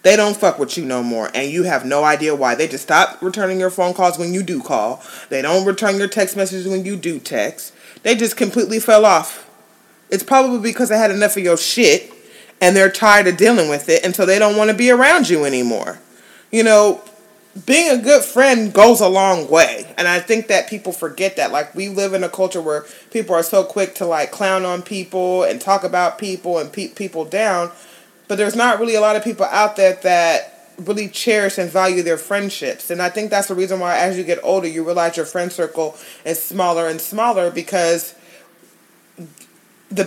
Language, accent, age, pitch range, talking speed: English, American, 30-49, 170-210 Hz, 215 wpm